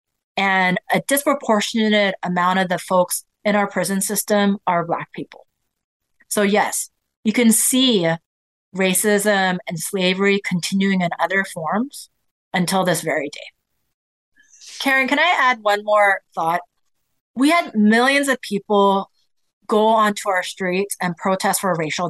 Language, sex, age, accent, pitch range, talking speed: English, female, 30-49, American, 175-210 Hz, 135 wpm